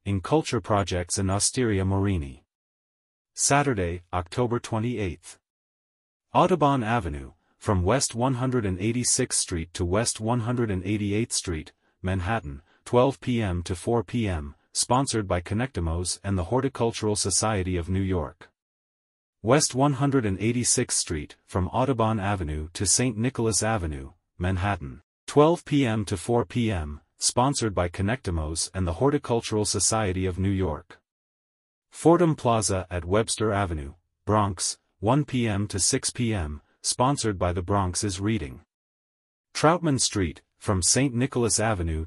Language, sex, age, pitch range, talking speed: English, male, 30-49, 90-120 Hz, 120 wpm